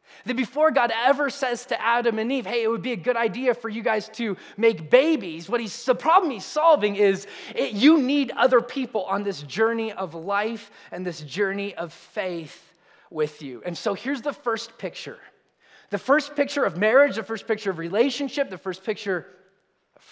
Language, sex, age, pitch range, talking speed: English, male, 20-39, 190-255 Hz, 195 wpm